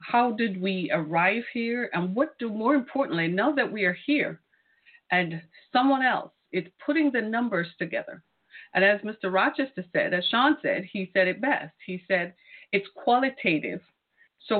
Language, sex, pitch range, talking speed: English, female, 180-250 Hz, 165 wpm